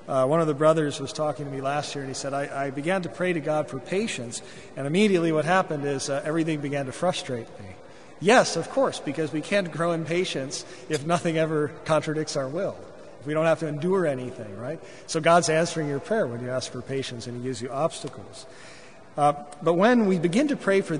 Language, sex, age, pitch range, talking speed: English, male, 40-59, 140-180 Hz, 230 wpm